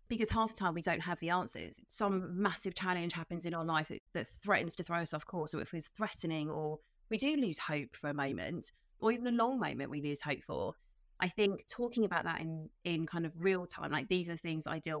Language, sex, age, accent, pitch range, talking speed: English, female, 30-49, British, 160-195 Hz, 255 wpm